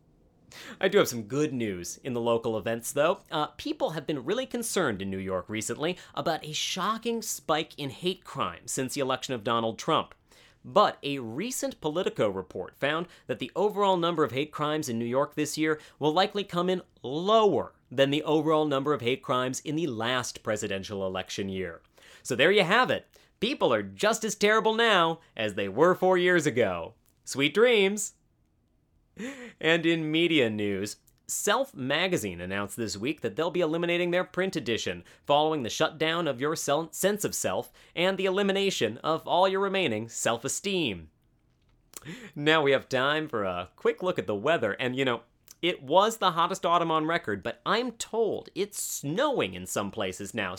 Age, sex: 30-49, male